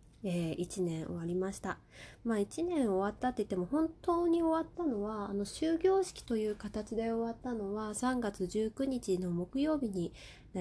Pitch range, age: 185-235 Hz, 20-39